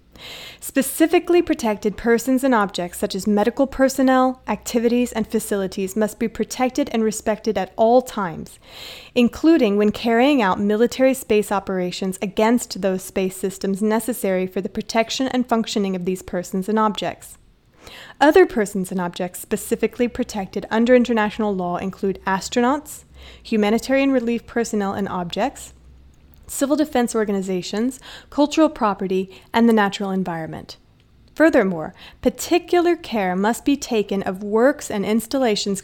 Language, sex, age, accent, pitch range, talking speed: English, female, 20-39, American, 195-245 Hz, 130 wpm